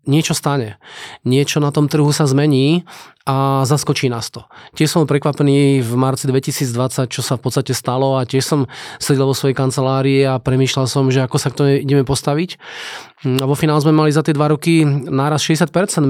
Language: Slovak